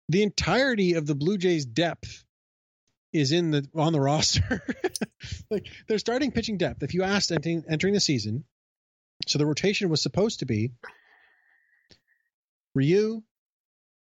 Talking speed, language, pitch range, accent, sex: 135 wpm, English, 125-180 Hz, American, male